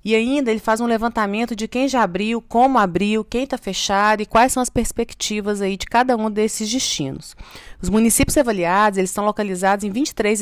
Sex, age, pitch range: female, 30-49, 180-230 Hz